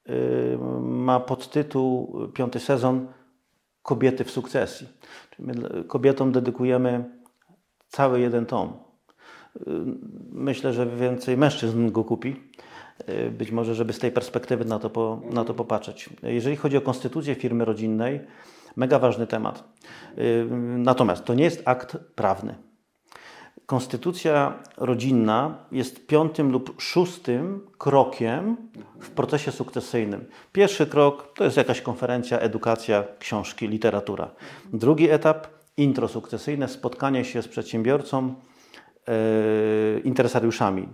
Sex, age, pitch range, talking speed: male, 40-59, 115-135 Hz, 105 wpm